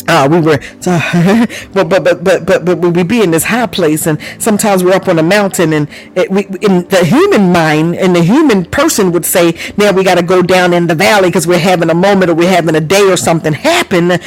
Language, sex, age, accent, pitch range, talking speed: English, female, 40-59, American, 170-220 Hz, 225 wpm